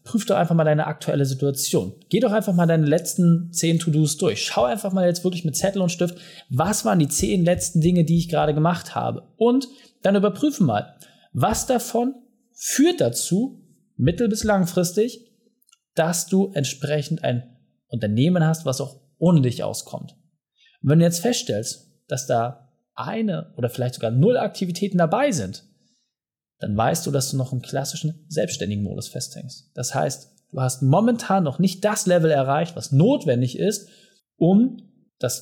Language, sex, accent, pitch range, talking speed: German, male, German, 140-195 Hz, 170 wpm